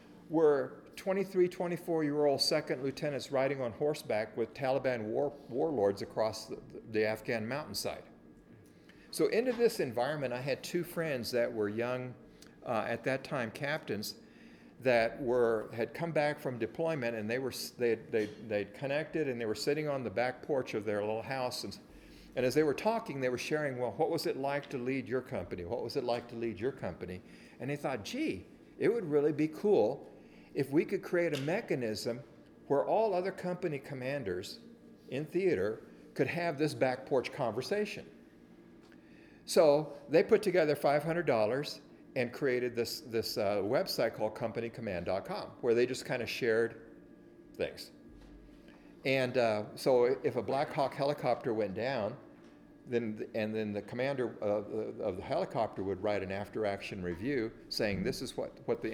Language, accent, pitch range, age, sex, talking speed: English, American, 110-155 Hz, 50-69, male, 170 wpm